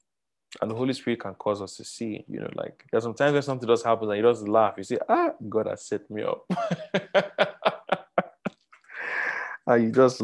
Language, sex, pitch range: English, male, 105-145 Hz